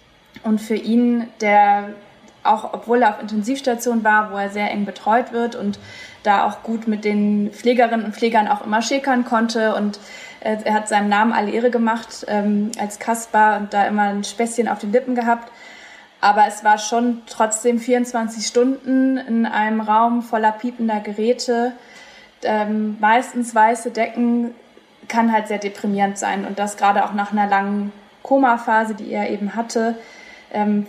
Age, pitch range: 20-39, 210-240 Hz